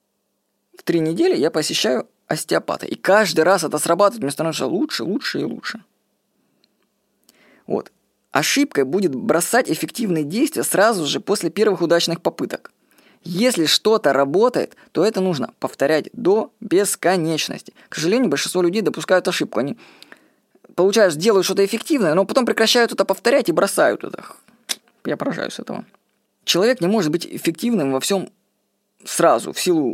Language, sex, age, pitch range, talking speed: Russian, female, 20-39, 175-245 Hz, 140 wpm